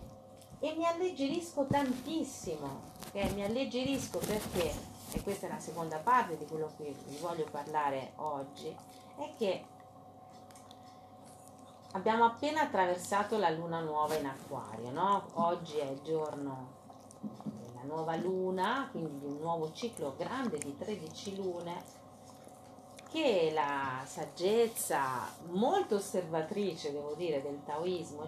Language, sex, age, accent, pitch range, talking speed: Italian, female, 40-59, native, 155-210 Hz, 120 wpm